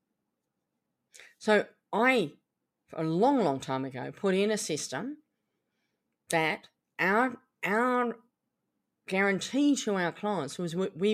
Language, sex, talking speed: English, female, 110 wpm